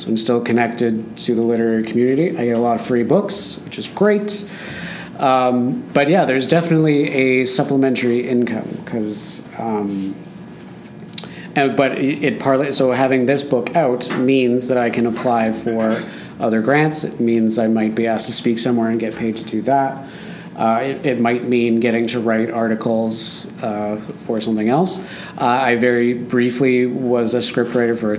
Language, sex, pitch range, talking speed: English, male, 115-135 Hz, 175 wpm